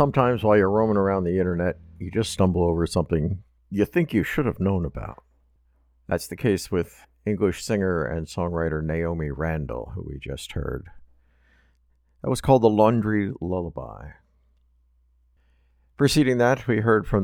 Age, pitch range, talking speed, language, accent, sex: 60-79, 65-105 Hz, 155 wpm, English, American, male